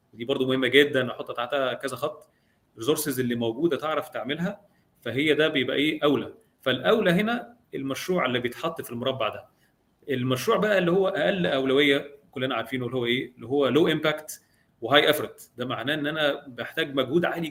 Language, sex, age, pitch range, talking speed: Arabic, male, 30-49, 125-155 Hz, 170 wpm